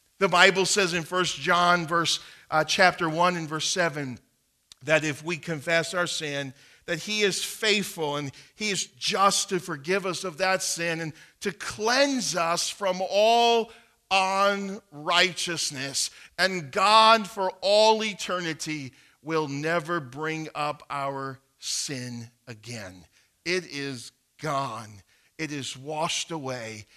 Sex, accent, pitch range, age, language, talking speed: male, American, 140-185 Hz, 50-69, English, 130 wpm